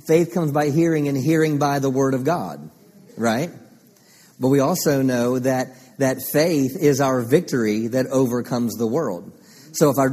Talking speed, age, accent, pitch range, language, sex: 170 wpm, 50-69, American, 130-160 Hz, English, male